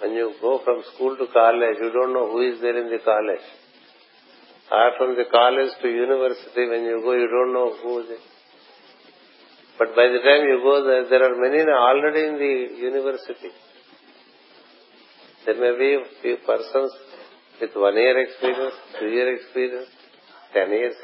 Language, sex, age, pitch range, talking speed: English, male, 50-69, 120-135 Hz, 165 wpm